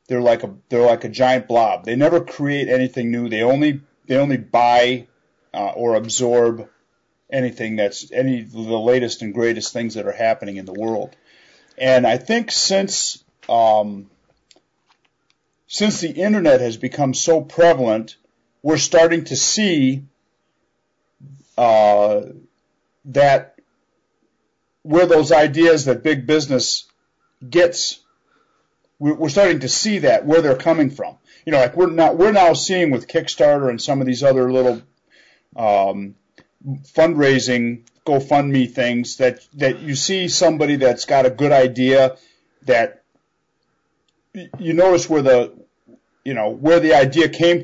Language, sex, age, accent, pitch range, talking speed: English, male, 50-69, American, 120-160 Hz, 140 wpm